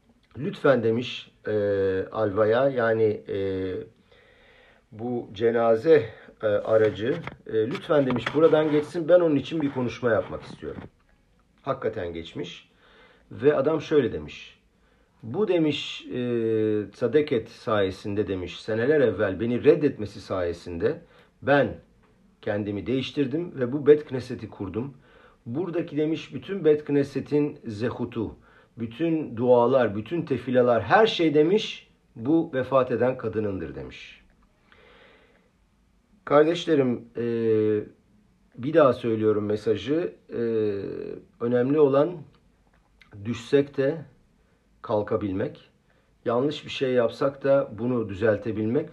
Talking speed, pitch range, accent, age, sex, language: 100 wpm, 110-145 Hz, native, 50-69, male, Turkish